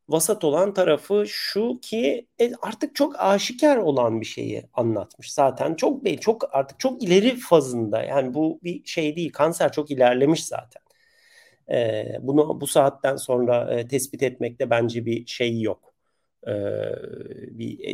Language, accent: Turkish, native